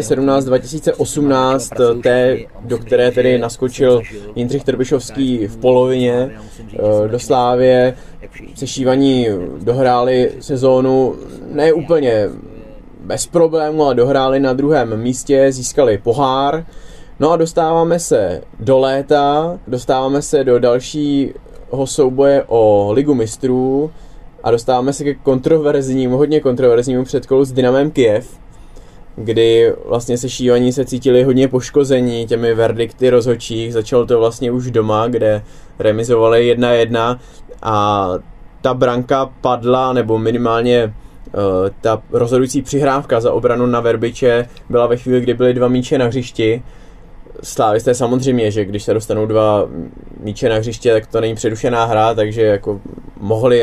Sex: male